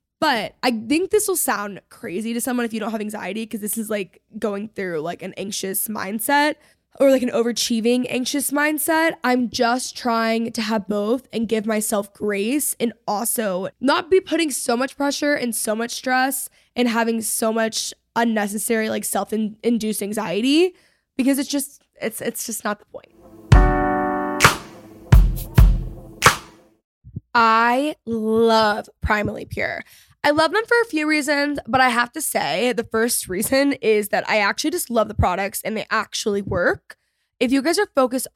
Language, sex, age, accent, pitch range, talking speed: English, female, 10-29, American, 215-270 Hz, 165 wpm